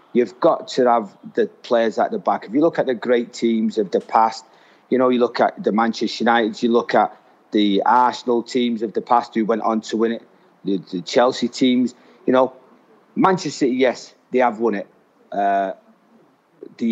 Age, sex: 30-49, male